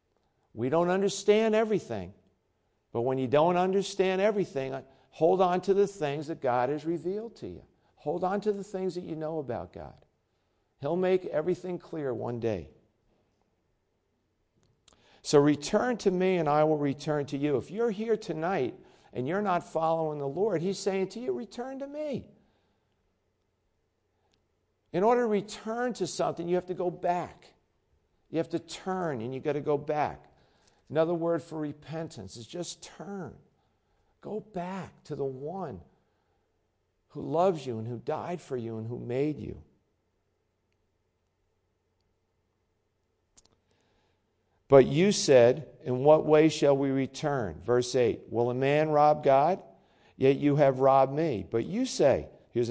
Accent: American